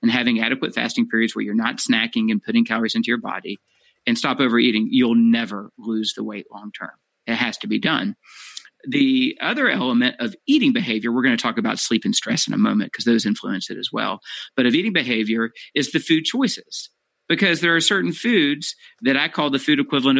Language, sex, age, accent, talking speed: English, male, 40-59, American, 215 wpm